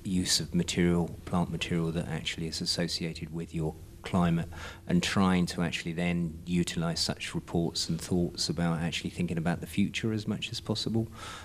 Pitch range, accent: 85-90 Hz, British